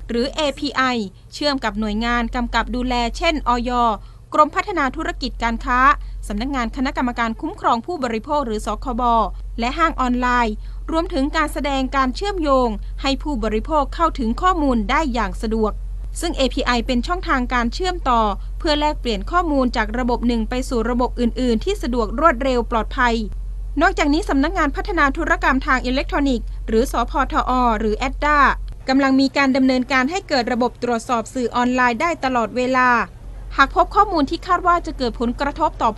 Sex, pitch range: female, 235-300 Hz